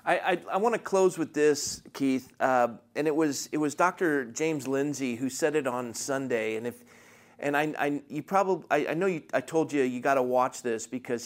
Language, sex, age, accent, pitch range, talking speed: English, male, 40-59, American, 125-160 Hz, 230 wpm